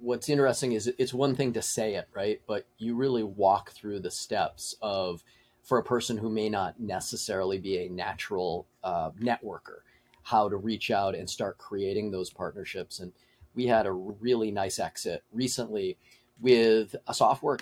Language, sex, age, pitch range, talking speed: English, male, 30-49, 110-125 Hz, 170 wpm